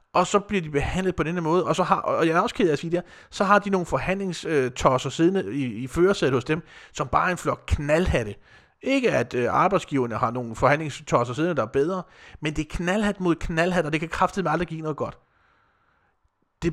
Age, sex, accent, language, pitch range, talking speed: 30-49, male, native, Danish, 135-180 Hz, 225 wpm